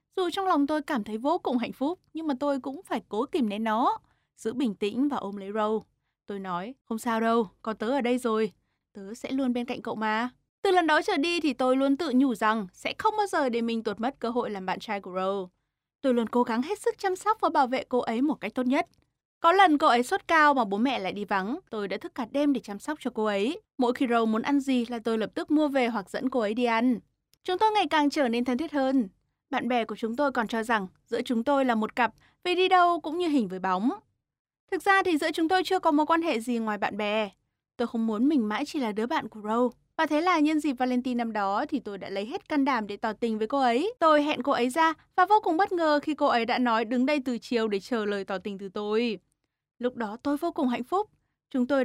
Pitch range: 220-300 Hz